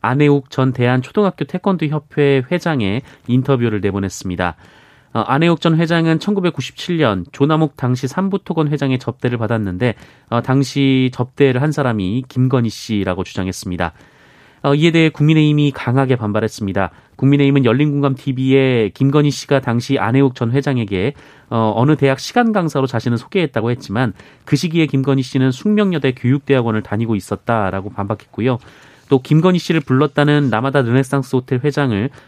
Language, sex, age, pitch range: Korean, male, 30-49, 115-145 Hz